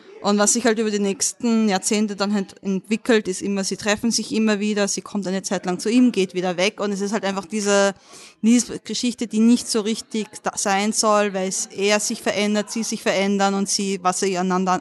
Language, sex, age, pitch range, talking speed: German, female, 20-39, 185-210 Hz, 225 wpm